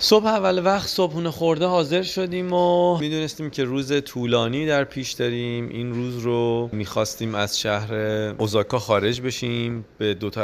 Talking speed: 150 wpm